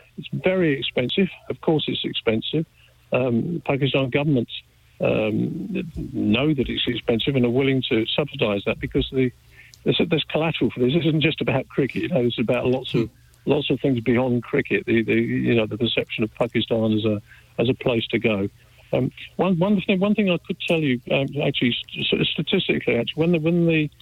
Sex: male